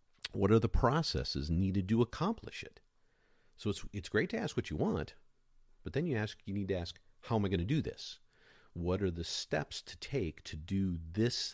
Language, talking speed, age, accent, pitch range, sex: English, 215 wpm, 50-69, American, 75-95 Hz, male